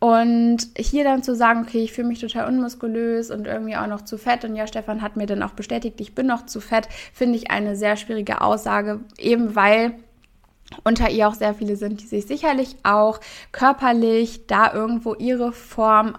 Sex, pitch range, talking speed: female, 215-245 Hz, 195 wpm